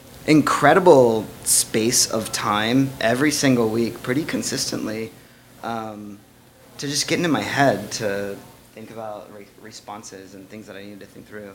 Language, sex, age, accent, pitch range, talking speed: English, male, 20-39, American, 105-125 Hz, 150 wpm